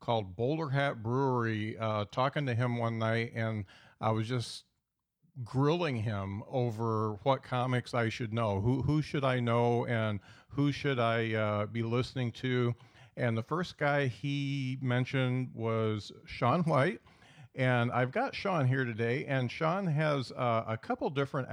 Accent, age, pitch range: American, 50-69, 115-135 Hz